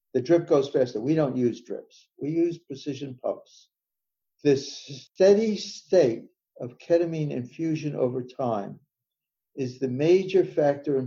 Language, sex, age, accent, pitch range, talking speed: English, male, 60-79, American, 125-160 Hz, 135 wpm